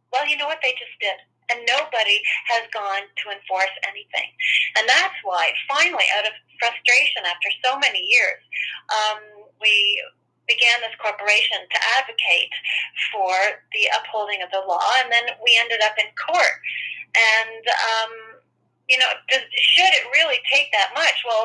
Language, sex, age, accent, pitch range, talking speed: English, female, 30-49, American, 210-255 Hz, 160 wpm